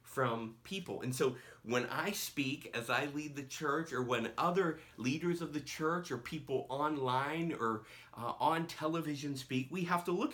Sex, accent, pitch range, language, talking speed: male, American, 130-180 Hz, English, 180 wpm